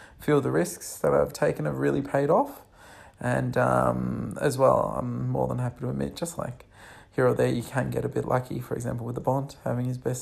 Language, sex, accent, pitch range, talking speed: English, male, Australian, 85-140 Hz, 230 wpm